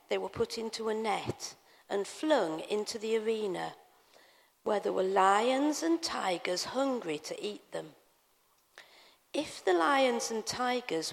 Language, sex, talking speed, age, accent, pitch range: English, female, 140 wpm, 50-69, British, 180-260 Hz